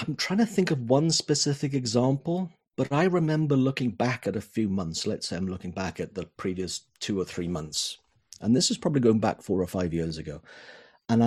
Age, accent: 40-59, British